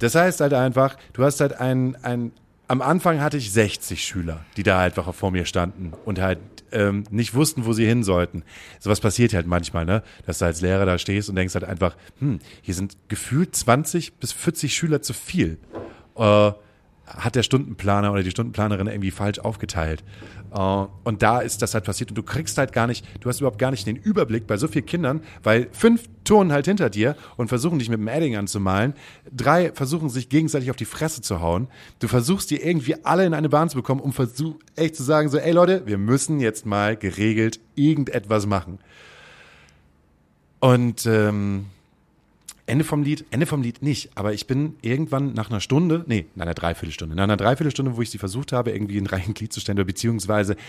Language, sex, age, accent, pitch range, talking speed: German, male, 40-59, German, 95-135 Hz, 200 wpm